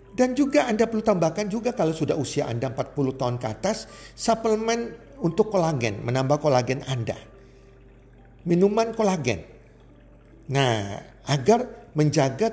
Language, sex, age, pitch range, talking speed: Indonesian, male, 50-69, 125-165 Hz, 120 wpm